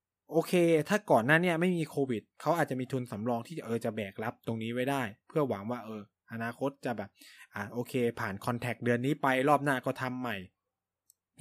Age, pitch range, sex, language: 20-39, 115-155 Hz, male, Thai